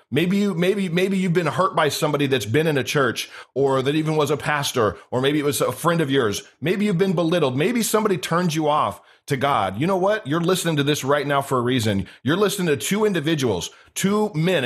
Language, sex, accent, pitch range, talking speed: English, male, American, 130-170 Hz, 240 wpm